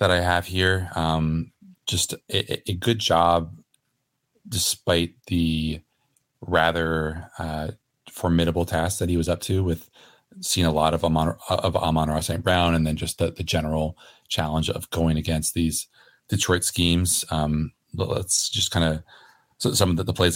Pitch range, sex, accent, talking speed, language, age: 80-95 Hz, male, American, 160 wpm, English, 30-49